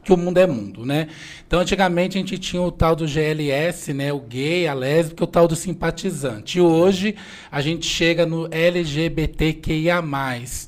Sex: male